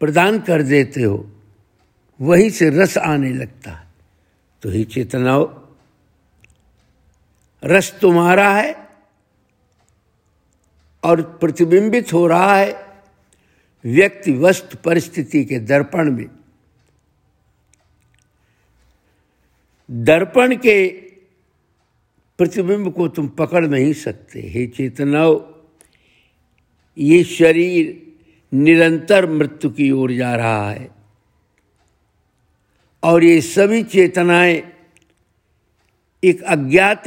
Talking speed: 85 wpm